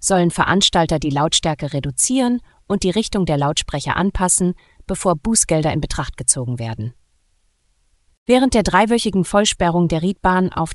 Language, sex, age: German, female, 30-49